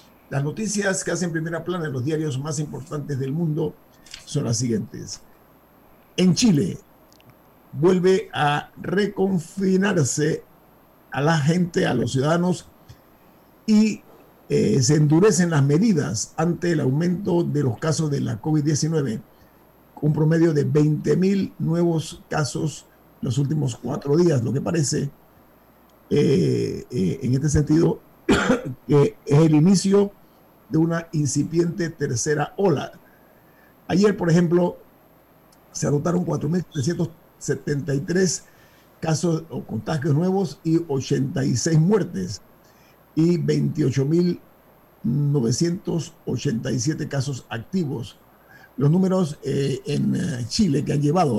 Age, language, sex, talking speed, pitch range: 50-69, Spanish, male, 110 wpm, 145-175 Hz